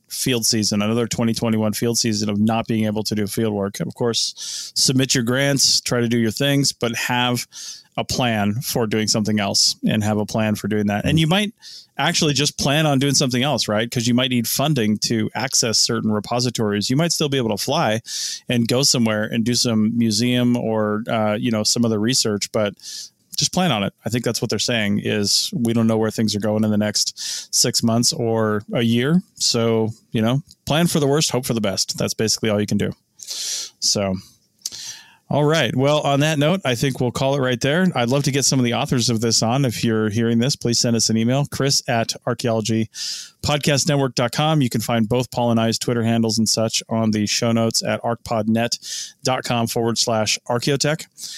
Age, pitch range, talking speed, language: 20-39, 110-130 Hz, 210 wpm, English